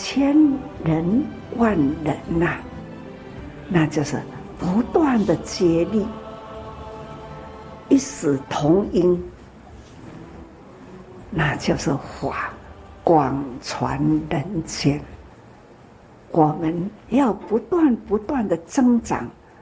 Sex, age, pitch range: female, 60-79, 135-220 Hz